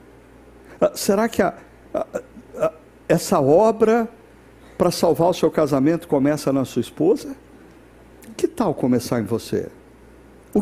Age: 60-79